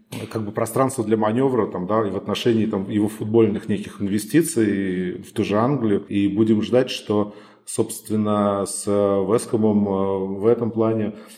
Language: Russian